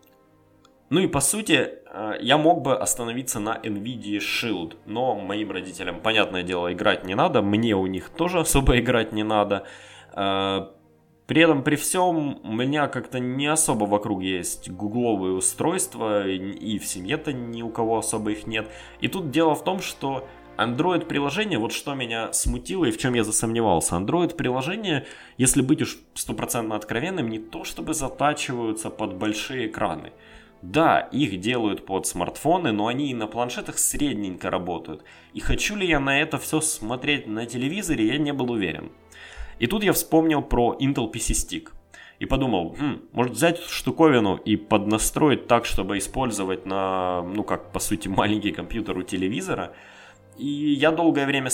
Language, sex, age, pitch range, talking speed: Russian, male, 20-39, 105-145 Hz, 160 wpm